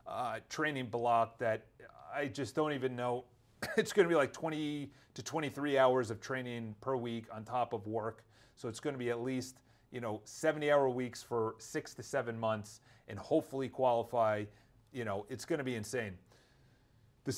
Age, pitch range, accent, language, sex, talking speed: 30-49, 115-150 Hz, American, English, male, 185 wpm